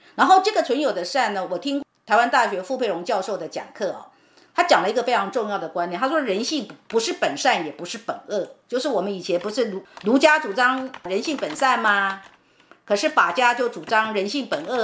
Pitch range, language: 205-300 Hz, Chinese